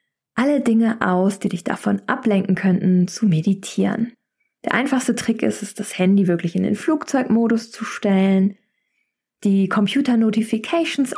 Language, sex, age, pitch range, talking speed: German, female, 20-39, 205-265 Hz, 135 wpm